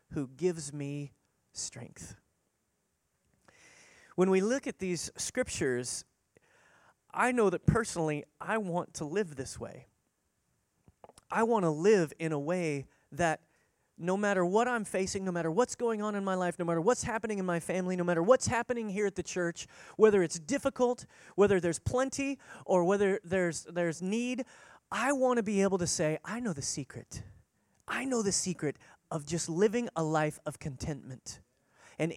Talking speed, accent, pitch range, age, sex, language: 165 wpm, American, 160-220 Hz, 30-49, male, English